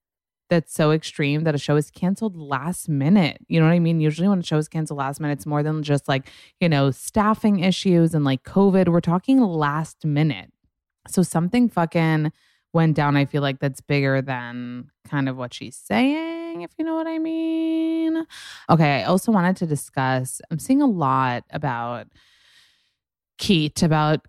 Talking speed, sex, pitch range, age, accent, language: 185 wpm, female, 140-180 Hz, 20-39, American, English